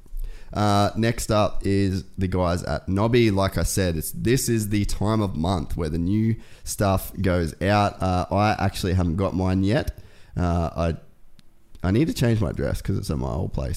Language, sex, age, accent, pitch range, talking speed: English, male, 20-39, Australian, 90-105 Hz, 195 wpm